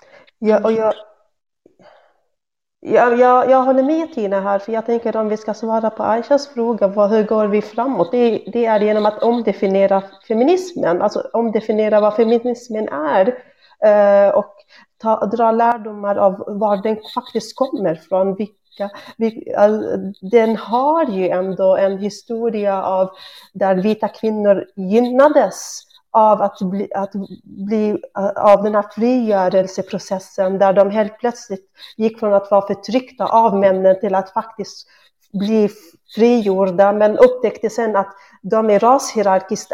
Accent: native